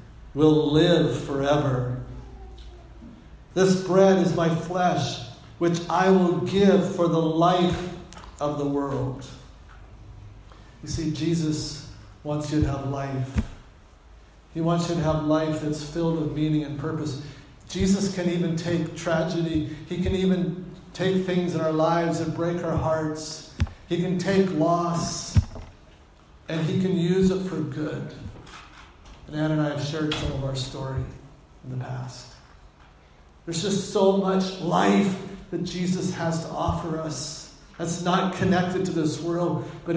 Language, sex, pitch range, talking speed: English, male, 145-180 Hz, 145 wpm